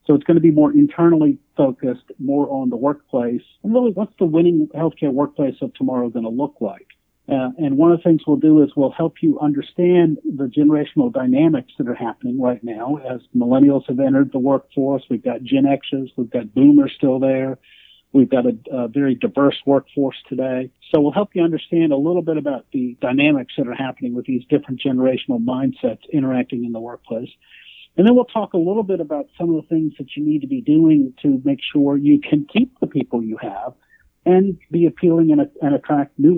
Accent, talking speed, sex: American, 210 wpm, male